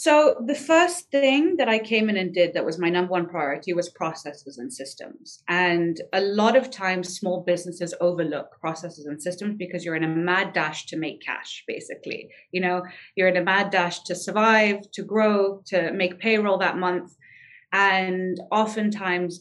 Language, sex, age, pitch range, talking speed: English, female, 30-49, 165-200 Hz, 180 wpm